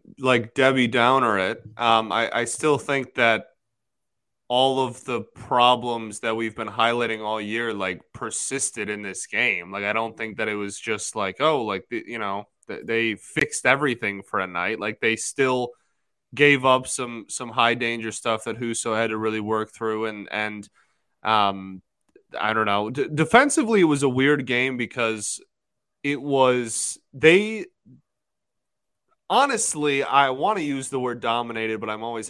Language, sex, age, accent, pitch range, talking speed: English, male, 20-39, American, 110-140 Hz, 165 wpm